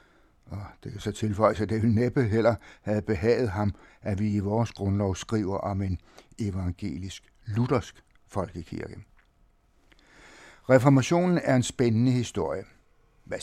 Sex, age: male, 60-79